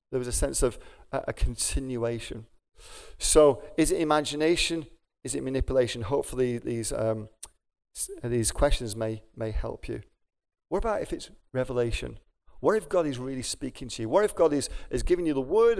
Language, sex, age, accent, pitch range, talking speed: English, male, 40-59, British, 115-155 Hz, 170 wpm